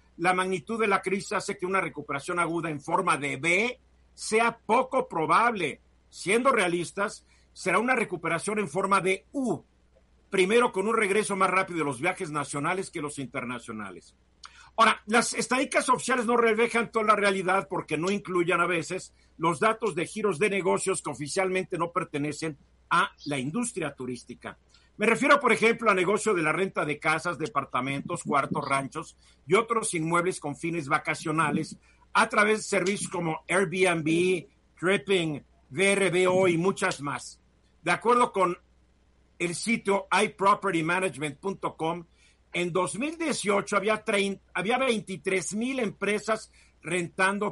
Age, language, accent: 50-69, Spanish, Mexican